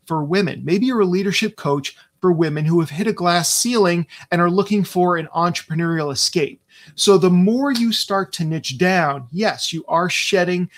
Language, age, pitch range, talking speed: English, 30-49, 150-195 Hz, 190 wpm